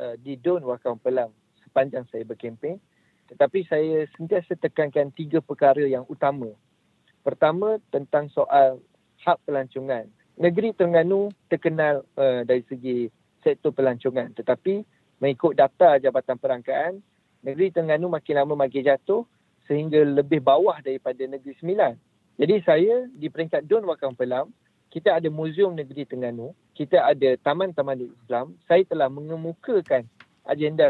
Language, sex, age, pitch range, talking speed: English, male, 50-69, 135-165 Hz, 125 wpm